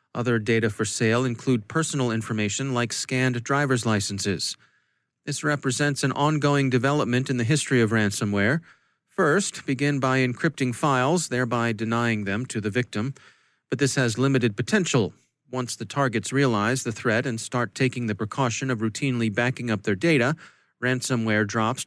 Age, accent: 40-59, American